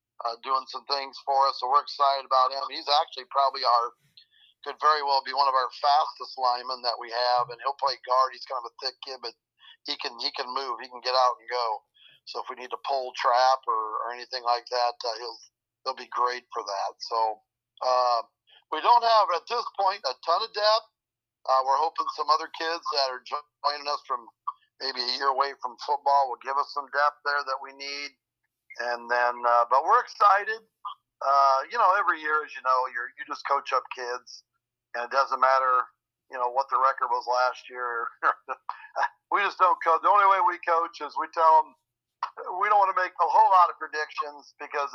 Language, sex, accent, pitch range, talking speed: English, male, American, 125-150 Hz, 215 wpm